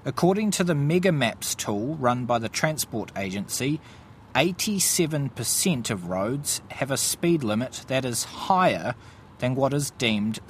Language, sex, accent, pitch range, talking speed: English, male, Australian, 110-145 Hz, 135 wpm